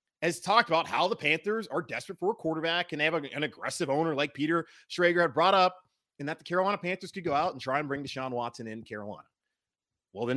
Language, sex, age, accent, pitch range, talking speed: English, male, 30-49, American, 125-180 Hz, 235 wpm